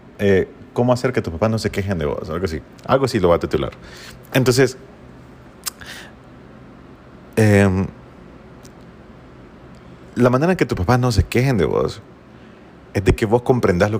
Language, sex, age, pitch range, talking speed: Spanish, male, 40-59, 95-125 Hz, 165 wpm